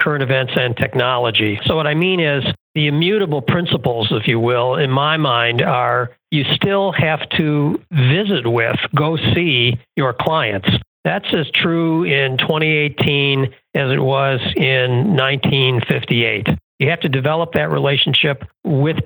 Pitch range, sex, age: 130-165 Hz, male, 60-79